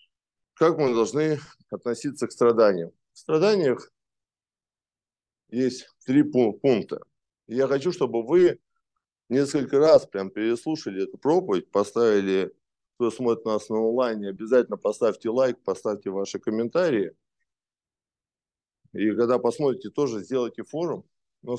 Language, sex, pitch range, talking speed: Russian, male, 105-145 Hz, 110 wpm